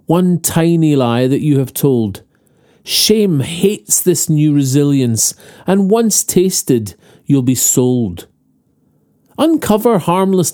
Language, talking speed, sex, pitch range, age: English, 115 wpm, male, 125-170 Hz, 40-59